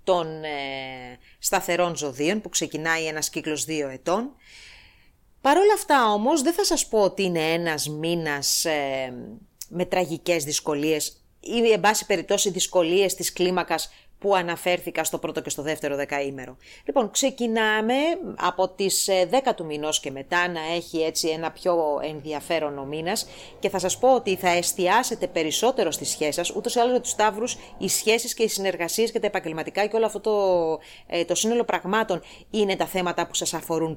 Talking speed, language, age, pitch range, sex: 170 wpm, English, 30-49, 160-235 Hz, female